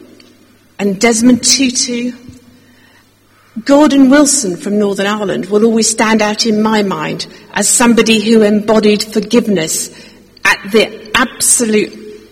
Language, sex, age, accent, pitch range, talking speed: English, female, 50-69, British, 205-255 Hz, 110 wpm